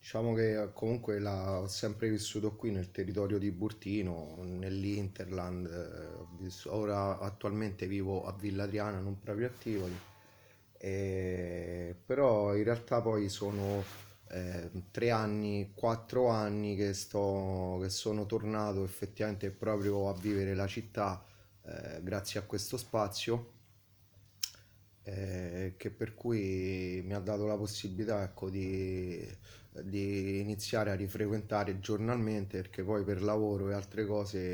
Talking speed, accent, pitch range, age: 125 wpm, native, 95-105 Hz, 20-39